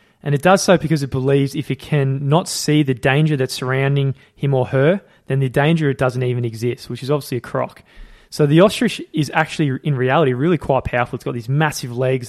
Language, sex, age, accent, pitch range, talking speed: English, male, 20-39, Australian, 130-150 Hz, 220 wpm